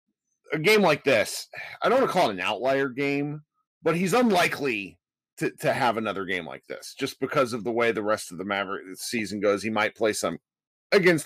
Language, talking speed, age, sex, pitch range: English, 215 wpm, 30-49, male, 115-170 Hz